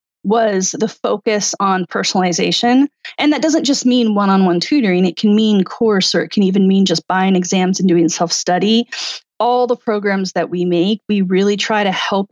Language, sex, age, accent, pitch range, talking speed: English, female, 30-49, American, 180-225 Hz, 185 wpm